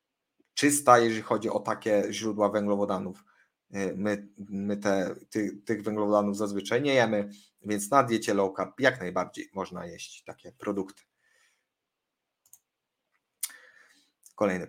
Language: Polish